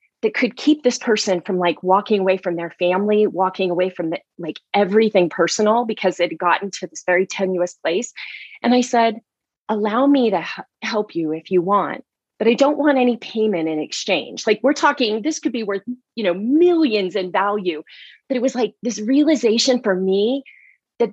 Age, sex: 30-49, female